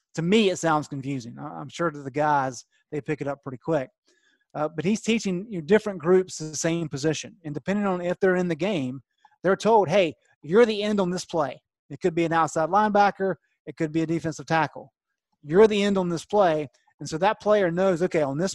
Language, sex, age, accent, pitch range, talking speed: English, male, 30-49, American, 155-205 Hz, 220 wpm